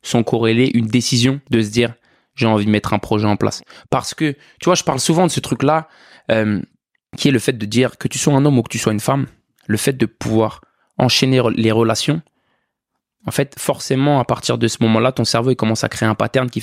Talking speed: 240 wpm